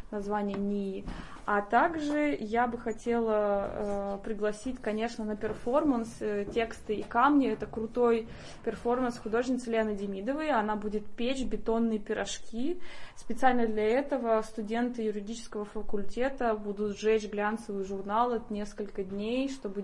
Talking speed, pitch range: 120 wpm, 205-235 Hz